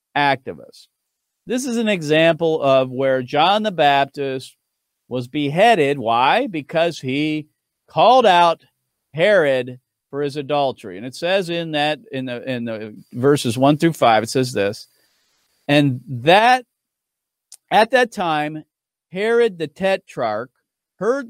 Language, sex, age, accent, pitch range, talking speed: English, male, 50-69, American, 130-185 Hz, 130 wpm